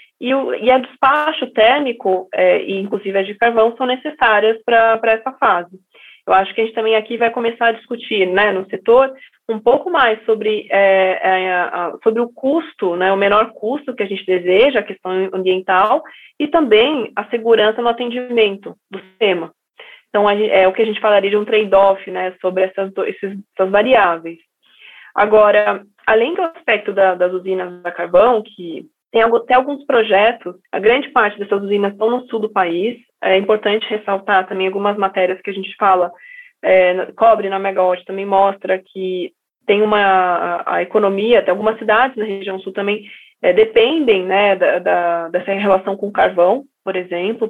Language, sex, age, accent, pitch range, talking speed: Portuguese, female, 20-39, Brazilian, 190-230 Hz, 170 wpm